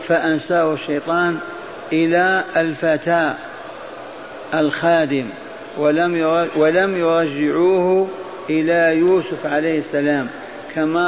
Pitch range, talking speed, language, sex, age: 155-175 Hz, 65 wpm, Arabic, male, 50-69